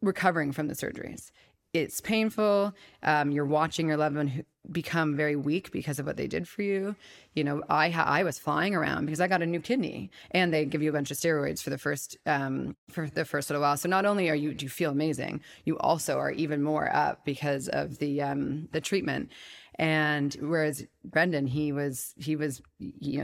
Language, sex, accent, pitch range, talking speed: English, female, American, 145-175 Hz, 210 wpm